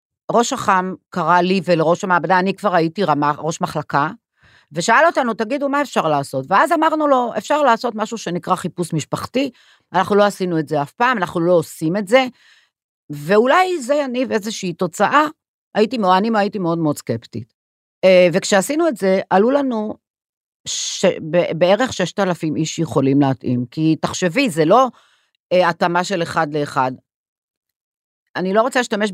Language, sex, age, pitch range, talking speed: Hebrew, female, 50-69, 165-230 Hz, 150 wpm